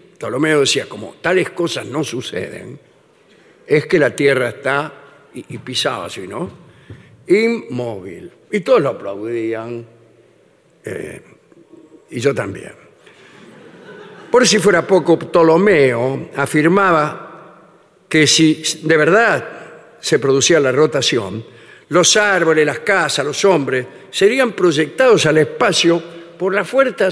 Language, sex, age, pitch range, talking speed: Spanish, male, 60-79, 145-190 Hz, 115 wpm